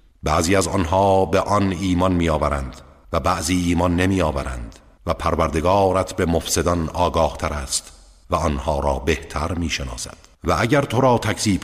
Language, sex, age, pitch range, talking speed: Persian, male, 50-69, 75-100 Hz, 145 wpm